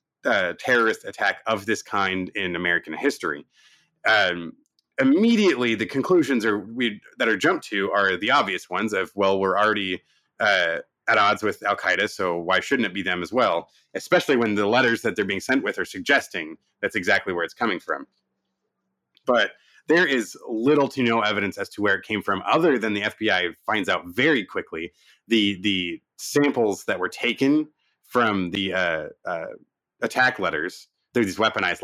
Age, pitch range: 30-49, 100-130 Hz